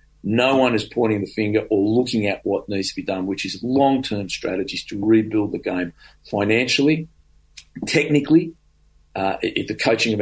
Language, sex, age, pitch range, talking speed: English, male, 40-59, 95-120 Hz, 165 wpm